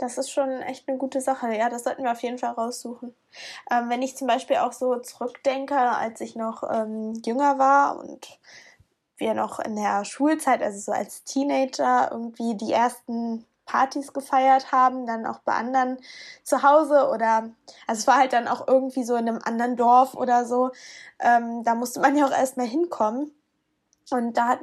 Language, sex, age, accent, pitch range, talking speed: German, female, 10-29, German, 240-275 Hz, 190 wpm